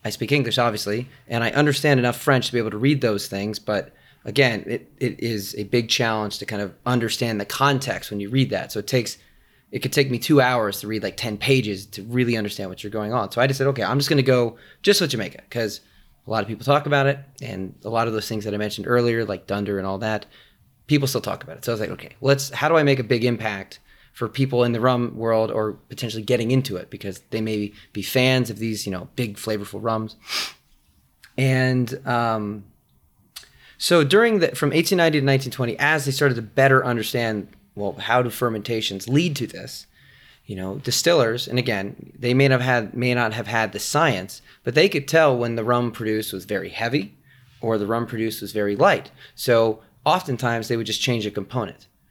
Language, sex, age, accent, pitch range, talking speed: English, male, 30-49, American, 105-130 Hz, 225 wpm